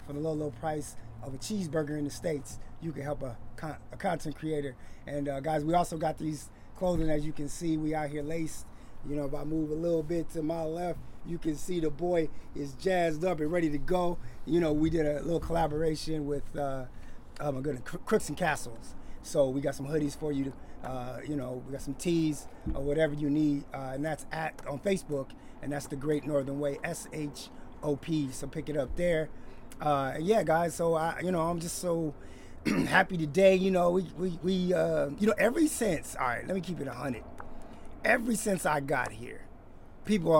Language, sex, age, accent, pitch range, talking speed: English, male, 30-49, American, 140-170 Hz, 215 wpm